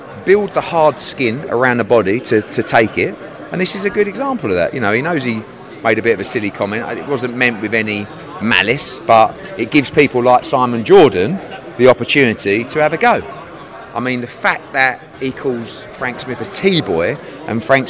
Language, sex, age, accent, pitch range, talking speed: English, male, 30-49, British, 110-150 Hz, 210 wpm